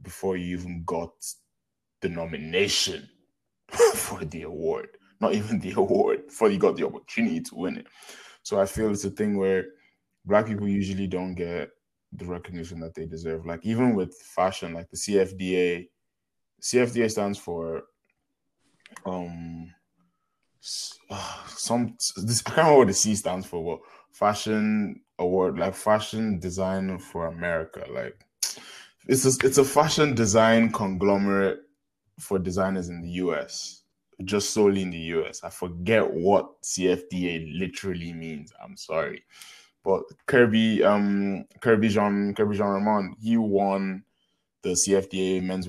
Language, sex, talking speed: English, male, 135 wpm